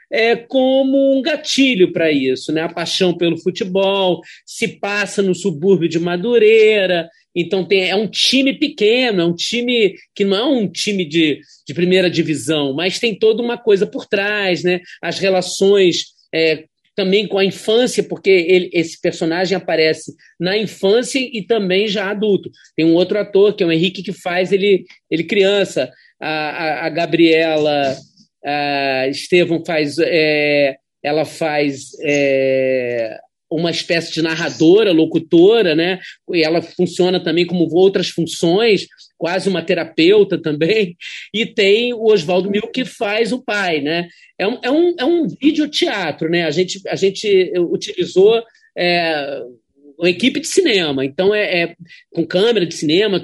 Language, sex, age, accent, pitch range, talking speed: Portuguese, male, 40-59, Brazilian, 165-220 Hz, 150 wpm